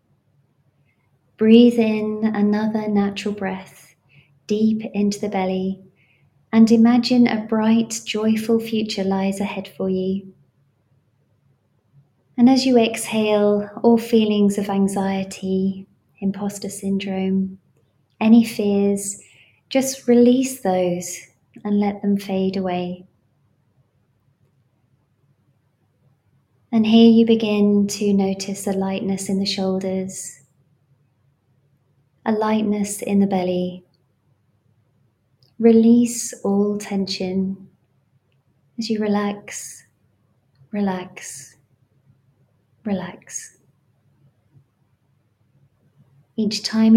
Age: 20-39